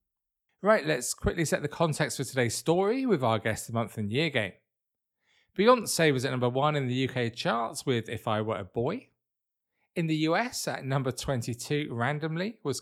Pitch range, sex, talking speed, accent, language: 125-180 Hz, male, 185 wpm, British, English